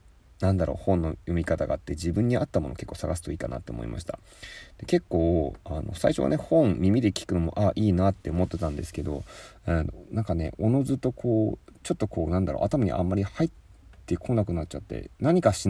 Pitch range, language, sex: 85-105 Hz, Japanese, male